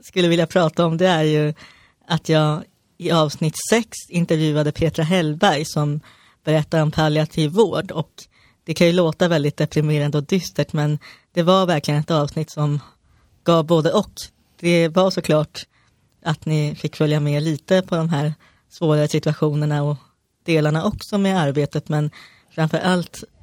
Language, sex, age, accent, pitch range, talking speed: Swedish, female, 30-49, native, 150-170 Hz, 155 wpm